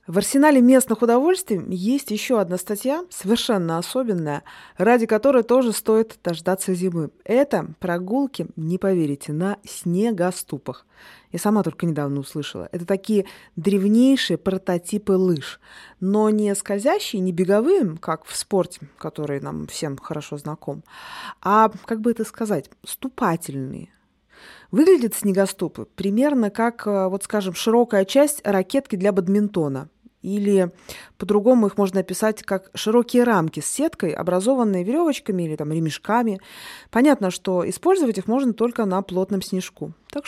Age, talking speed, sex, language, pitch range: 20-39, 130 wpm, female, Russian, 175-235 Hz